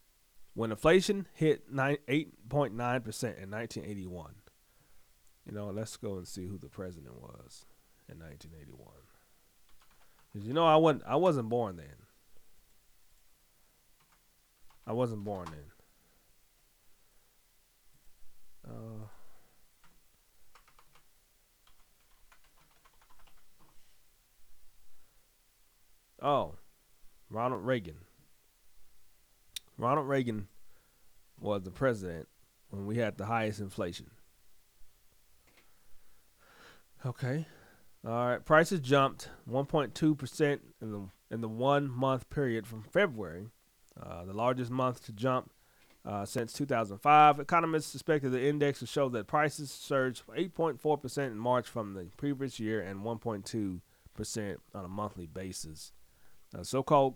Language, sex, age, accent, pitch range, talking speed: English, male, 30-49, American, 100-140 Hz, 95 wpm